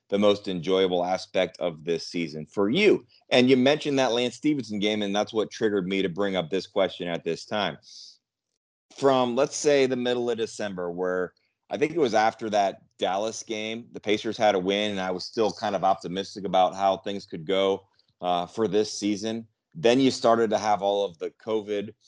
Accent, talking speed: American, 205 wpm